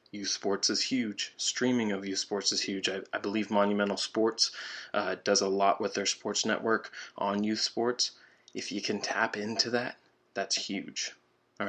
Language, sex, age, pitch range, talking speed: English, male, 20-39, 95-105 Hz, 180 wpm